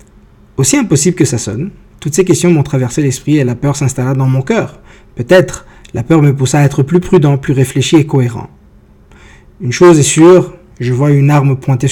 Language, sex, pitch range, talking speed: English, male, 130-170 Hz, 200 wpm